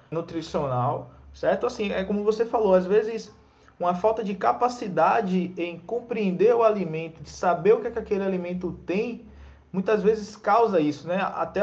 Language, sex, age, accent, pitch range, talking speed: Portuguese, male, 20-39, Brazilian, 150-195 Hz, 165 wpm